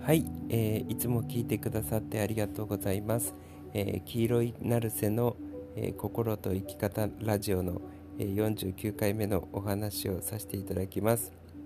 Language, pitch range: Japanese, 90-115 Hz